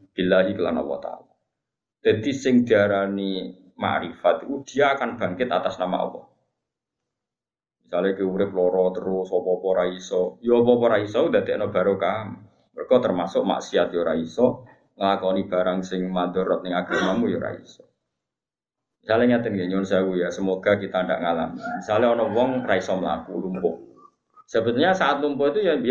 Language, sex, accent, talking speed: Indonesian, male, native, 150 wpm